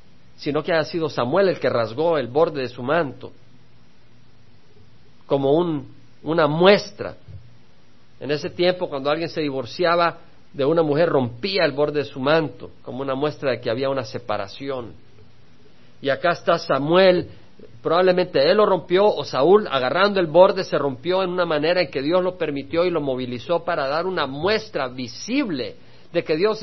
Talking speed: 170 wpm